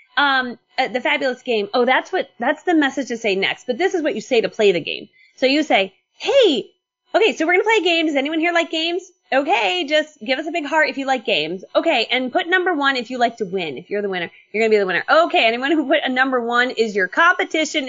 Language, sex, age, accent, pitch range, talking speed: English, female, 20-39, American, 215-315 Hz, 270 wpm